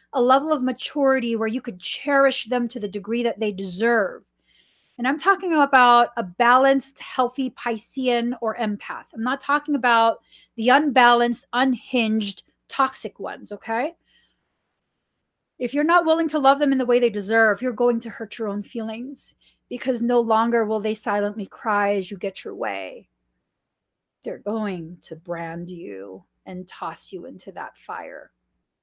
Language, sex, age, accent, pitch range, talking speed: English, female, 30-49, American, 215-265 Hz, 160 wpm